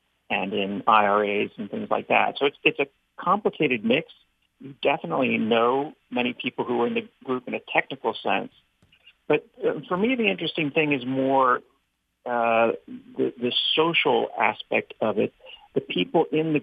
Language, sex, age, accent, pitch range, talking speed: English, male, 50-69, American, 120-165 Hz, 165 wpm